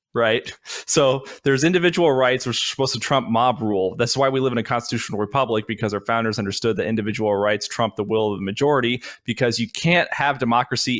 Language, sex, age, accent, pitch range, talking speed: English, male, 20-39, American, 115-140 Hz, 205 wpm